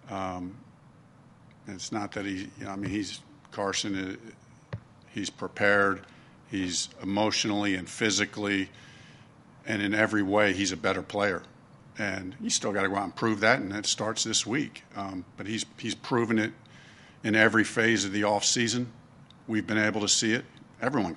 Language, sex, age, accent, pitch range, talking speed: English, male, 50-69, American, 100-115 Hz, 170 wpm